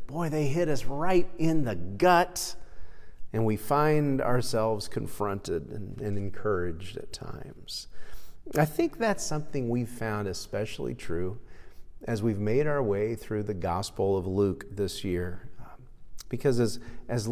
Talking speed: 140 wpm